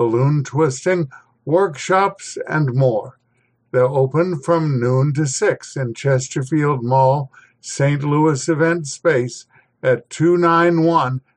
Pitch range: 130-170 Hz